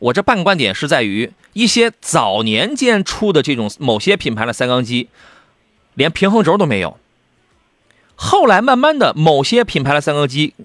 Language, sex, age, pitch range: Chinese, male, 30-49, 150-245 Hz